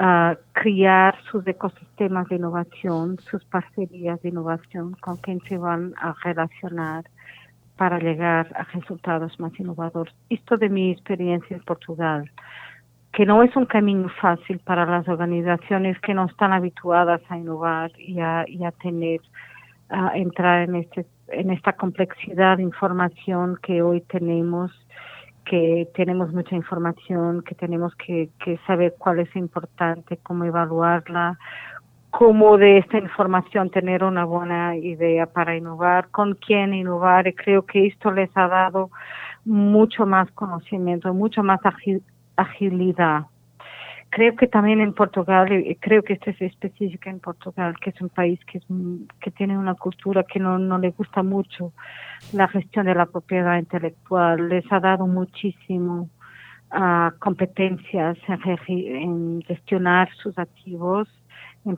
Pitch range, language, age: 175-195 Hz, Spanish, 40-59